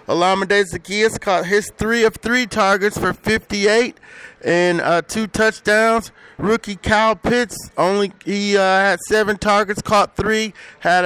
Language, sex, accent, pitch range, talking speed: English, male, American, 185-210 Hz, 140 wpm